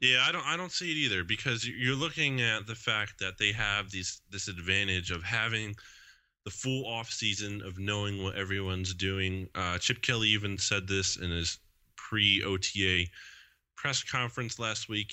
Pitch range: 95-115 Hz